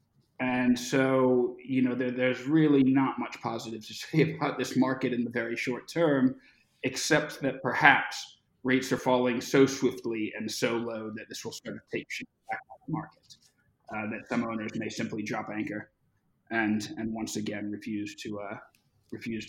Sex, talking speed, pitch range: male, 180 wpm, 115-140 Hz